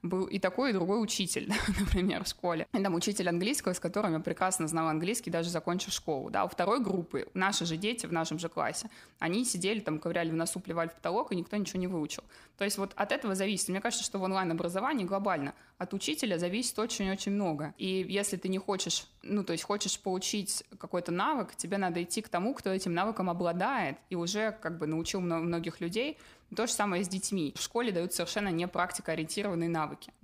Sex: female